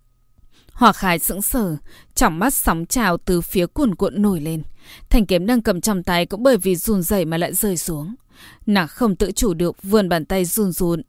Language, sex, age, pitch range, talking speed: Vietnamese, female, 20-39, 170-220 Hz, 210 wpm